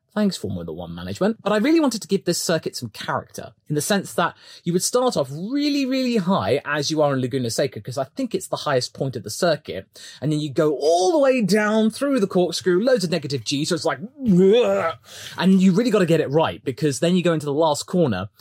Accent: British